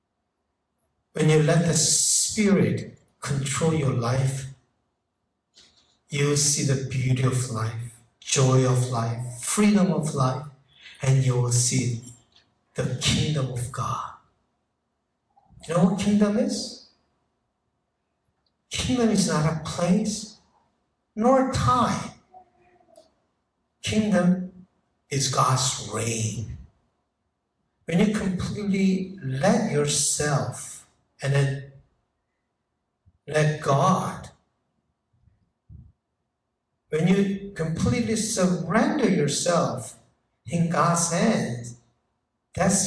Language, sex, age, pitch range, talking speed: English, male, 60-79, 130-185 Hz, 90 wpm